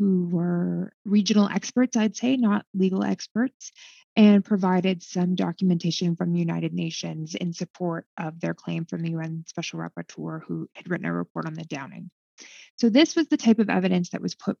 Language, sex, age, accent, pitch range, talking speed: English, female, 20-39, American, 175-230 Hz, 185 wpm